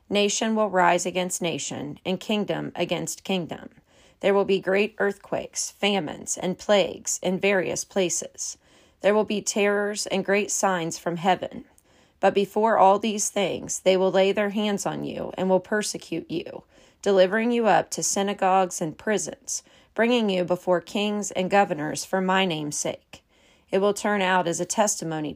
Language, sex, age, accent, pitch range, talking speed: English, female, 40-59, American, 180-205 Hz, 165 wpm